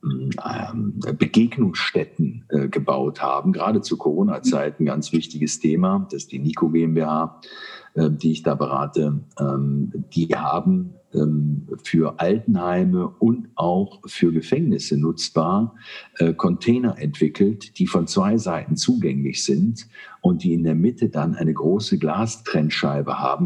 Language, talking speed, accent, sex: German, 120 wpm, German, male